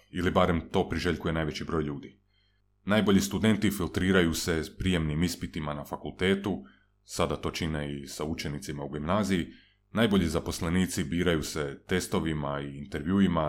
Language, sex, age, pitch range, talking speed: Croatian, male, 30-49, 80-100 Hz, 140 wpm